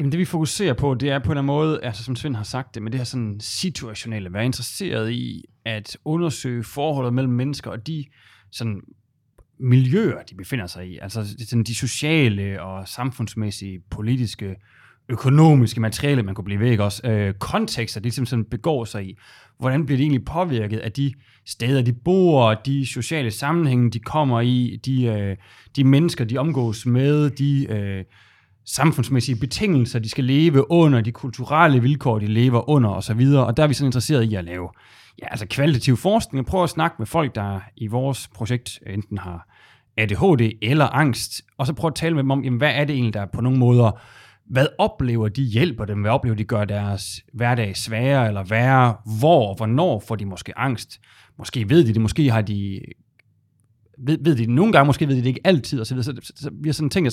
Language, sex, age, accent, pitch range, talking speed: Danish, male, 30-49, native, 110-140 Hz, 200 wpm